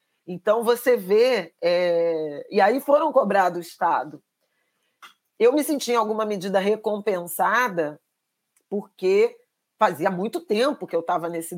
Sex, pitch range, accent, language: female, 180-240 Hz, Brazilian, Portuguese